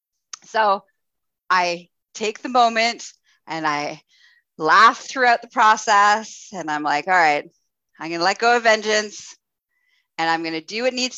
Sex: female